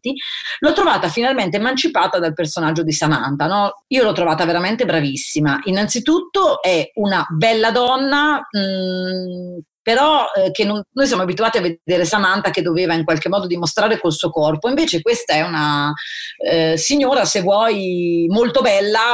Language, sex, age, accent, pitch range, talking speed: Italian, female, 30-49, native, 170-240 Hz, 145 wpm